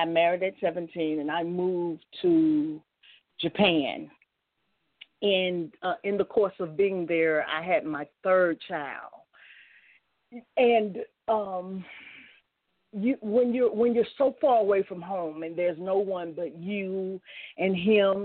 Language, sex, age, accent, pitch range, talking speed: English, female, 40-59, American, 165-200 Hz, 140 wpm